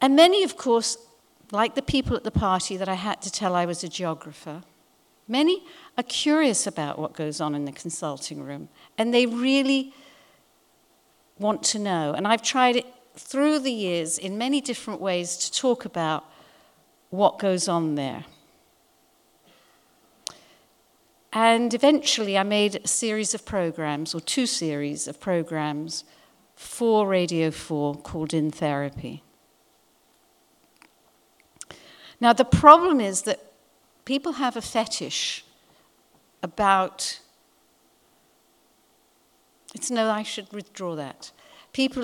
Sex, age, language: female, 60-79, English